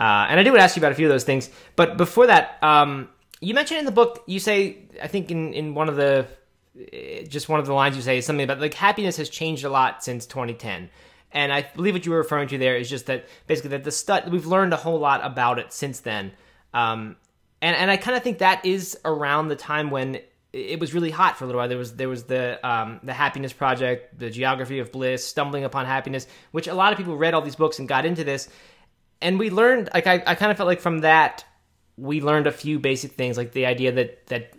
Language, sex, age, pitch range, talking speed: English, male, 20-39, 125-170 Hz, 260 wpm